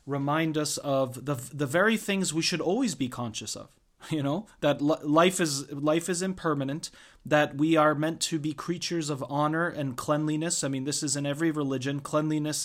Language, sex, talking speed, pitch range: English, male, 195 wpm, 145-170 Hz